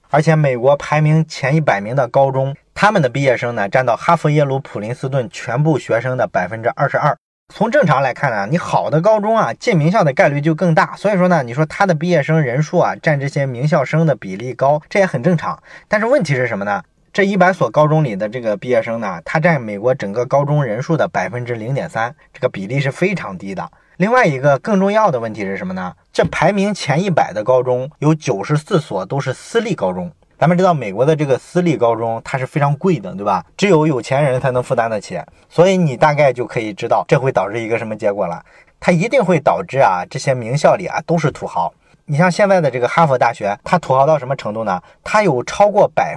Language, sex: Chinese, male